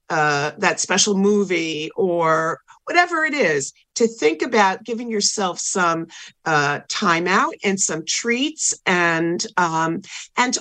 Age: 50-69